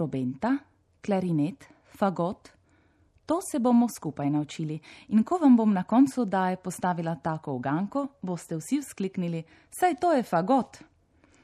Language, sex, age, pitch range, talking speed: Italian, female, 30-49, 165-235 Hz, 135 wpm